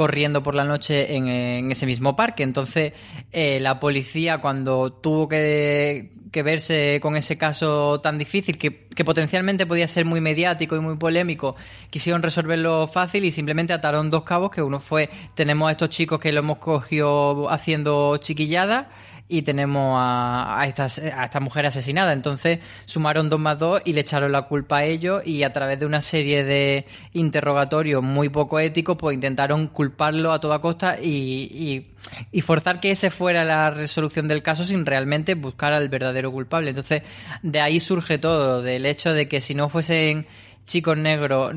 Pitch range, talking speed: 140-160 Hz, 180 wpm